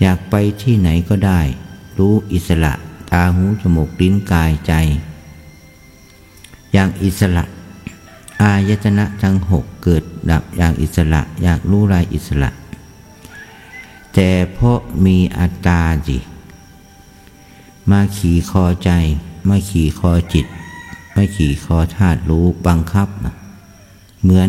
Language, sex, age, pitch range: Thai, male, 60-79, 80-95 Hz